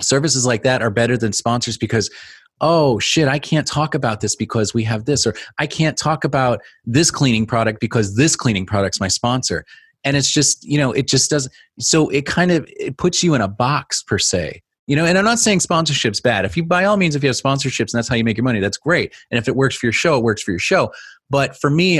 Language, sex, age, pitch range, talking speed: English, male, 30-49, 105-140 Hz, 255 wpm